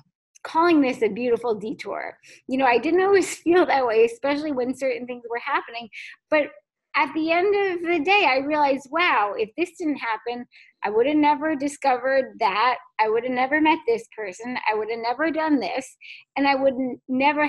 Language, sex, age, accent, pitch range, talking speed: English, female, 20-39, American, 240-330 Hz, 190 wpm